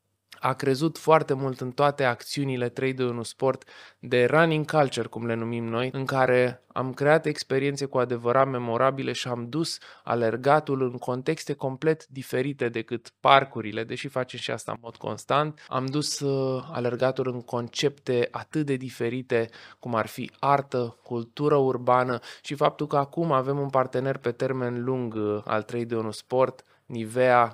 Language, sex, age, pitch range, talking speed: Romanian, male, 20-39, 115-135 Hz, 155 wpm